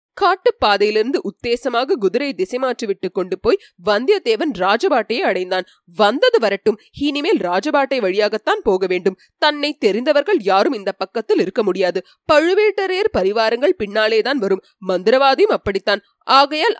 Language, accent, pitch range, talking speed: Tamil, native, 210-350 Hz, 115 wpm